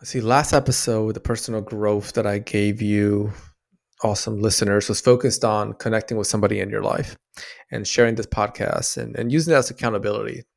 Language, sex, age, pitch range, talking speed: English, male, 20-39, 105-125 Hz, 175 wpm